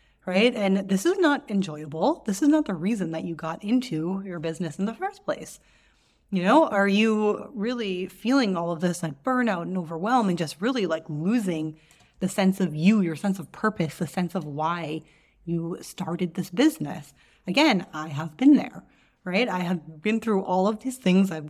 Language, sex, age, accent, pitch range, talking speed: English, female, 30-49, American, 170-210 Hz, 195 wpm